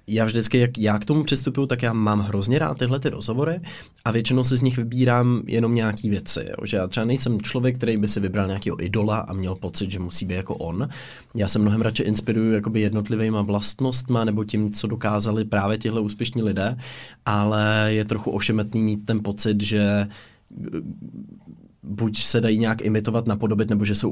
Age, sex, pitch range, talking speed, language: 20-39, male, 100-115 Hz, 185 wpm, Czech